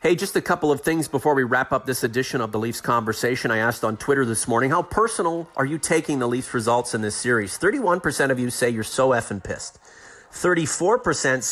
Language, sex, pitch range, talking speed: English, male, 120-155 Hz, 220 wpm